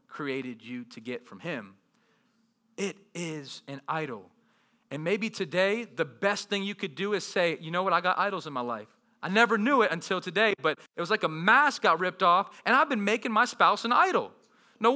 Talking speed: 215 wpm